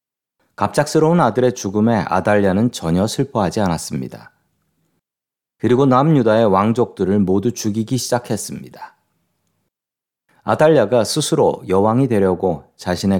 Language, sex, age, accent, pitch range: Korean, male, 40-59, native, 100-135 Hz